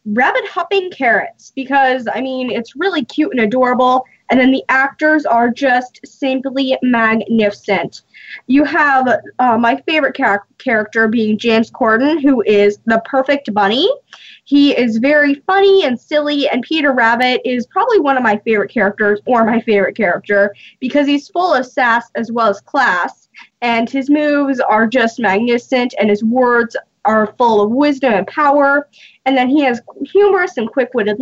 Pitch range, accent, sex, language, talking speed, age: 220-280 Hz, American, female, English, 160 wpm, 10-29